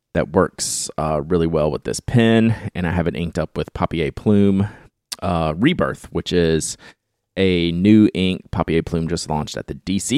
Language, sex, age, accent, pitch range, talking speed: English, male, 30-49, American, 80-110 Hz, 185 wpm